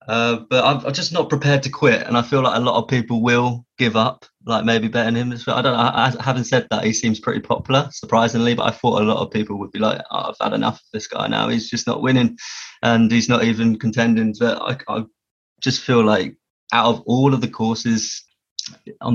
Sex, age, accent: male, 20-39, British